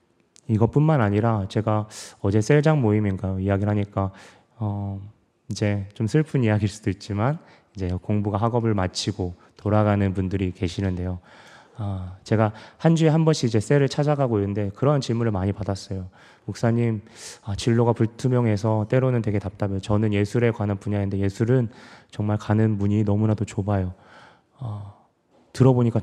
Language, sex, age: Korean, male, 20-39